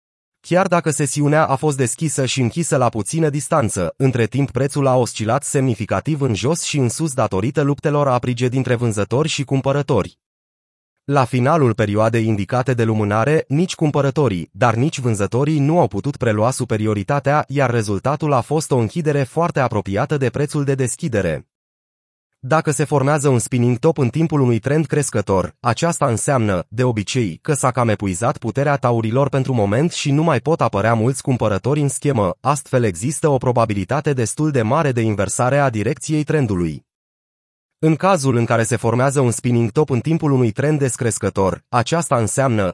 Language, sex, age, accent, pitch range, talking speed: Romanian, male, 30-49, native, 115-150 Hz, 165 wpm